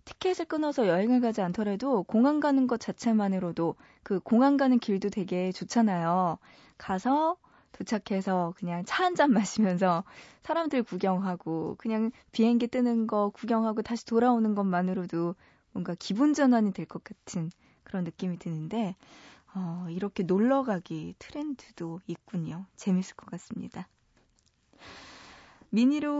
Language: Korean